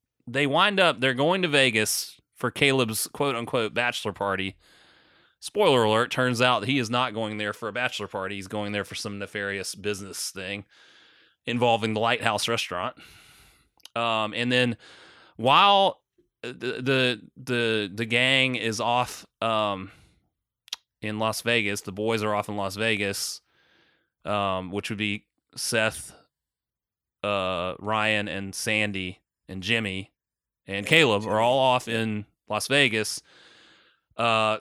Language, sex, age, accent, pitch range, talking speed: English, male, 30-49, American, 105-125 Hz, 135 wpm